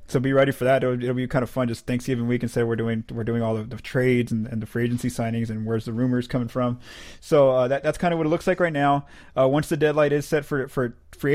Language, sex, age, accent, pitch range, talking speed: English, male, 20-39, American, 120-140 Hz, 300 wpm